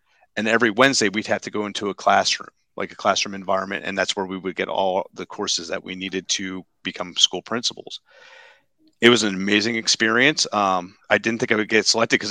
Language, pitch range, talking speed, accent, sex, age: English, 100-115 Hz, 215 wpm, American, male, 30-49